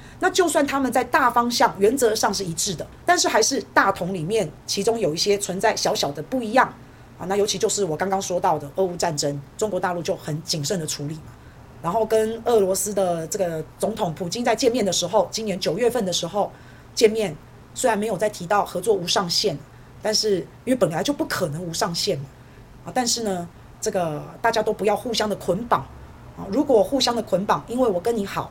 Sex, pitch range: female, 165-225 Hz